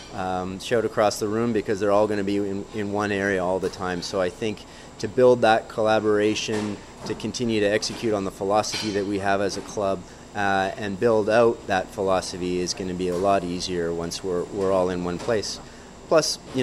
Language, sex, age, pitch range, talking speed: English, male, 30-49, 95-110 Hz, 215 wpm